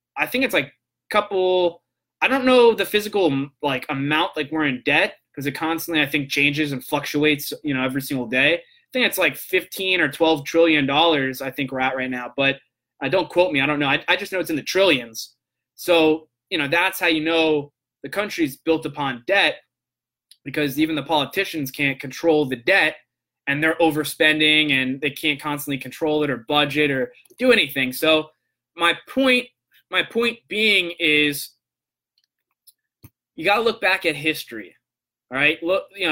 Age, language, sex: 20-39, English, male